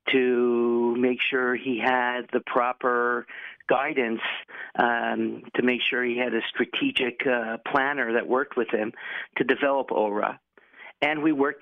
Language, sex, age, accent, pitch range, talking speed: English, male, 50-69, American, 120-140 Hz, 145 wpm